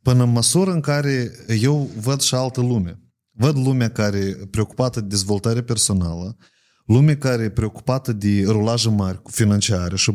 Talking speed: 160 wpm